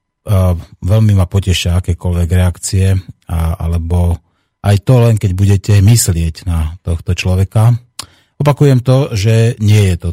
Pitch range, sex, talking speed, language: 90-105 Hz, male, 125 wpm, Slovak